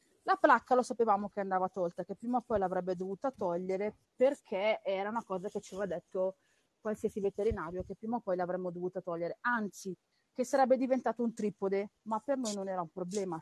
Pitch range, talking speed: 185-290 Hz, 195 wpm